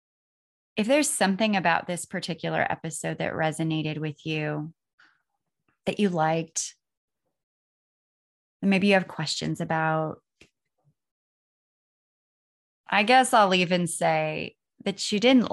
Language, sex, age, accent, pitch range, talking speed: English, female, 20-39, American, 170-210 Hz, 110 wpm